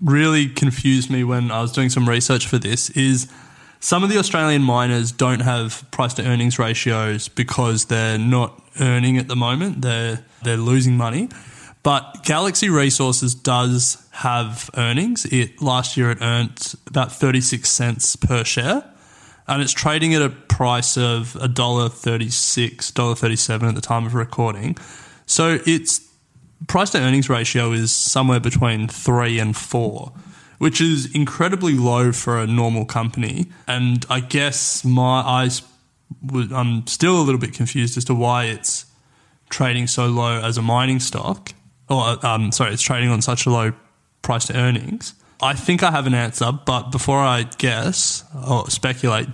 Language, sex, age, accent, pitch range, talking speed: English, male, 20-39, Australian, 120-135 Hz, 160 wpm